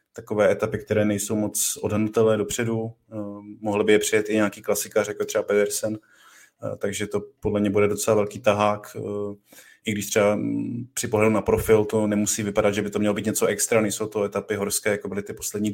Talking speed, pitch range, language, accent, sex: 190 wpm, 100-105 Hz, Czech, native, male